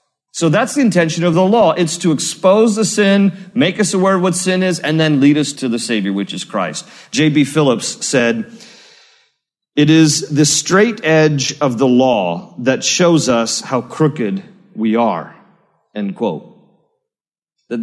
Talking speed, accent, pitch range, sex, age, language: 170 wpm, American, 115-170 Hz, male, 40-59, English